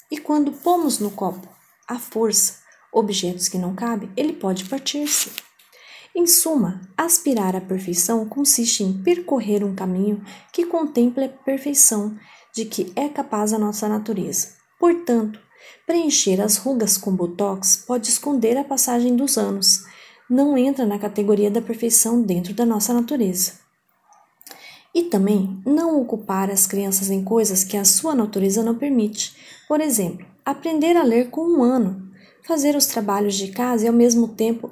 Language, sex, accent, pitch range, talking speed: Portuguese, female, Brazilian, 195-265 Hz, 150 wpm